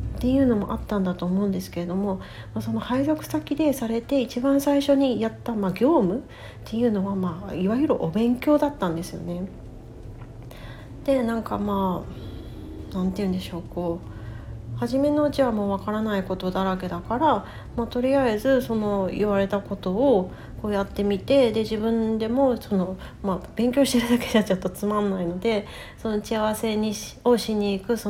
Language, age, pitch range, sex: Japanese, 40-59, 185-240 Hz, female